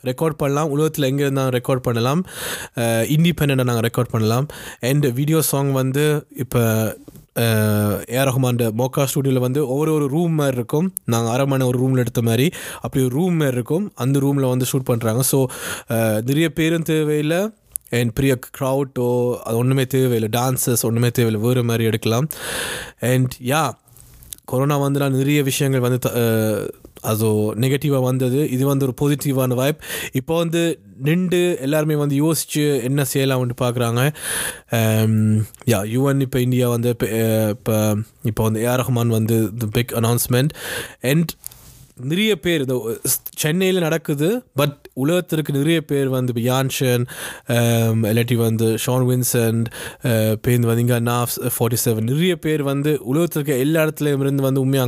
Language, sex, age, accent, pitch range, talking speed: Tamil, male, 20-39, native, 120-145 Hz, 135 wpm